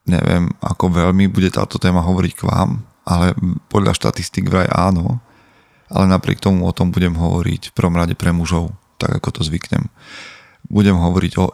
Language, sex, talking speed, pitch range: Slovak, male, 170 wpm, 85-100 Hz